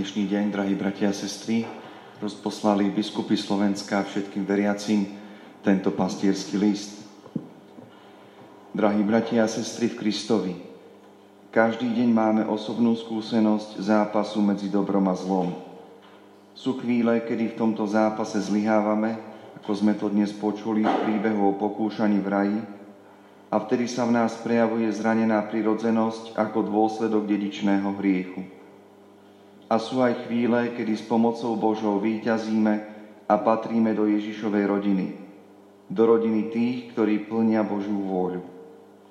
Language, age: Slovak, 40-59